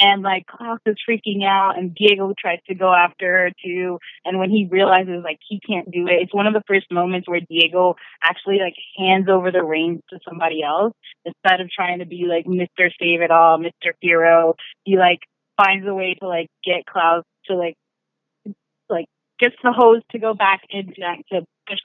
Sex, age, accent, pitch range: female, 20-39, American, 170-195 Hz